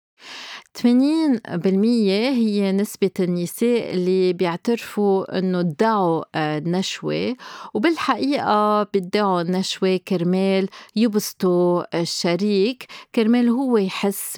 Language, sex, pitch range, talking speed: Arabic, female, 175-215 Hz, 80 wpm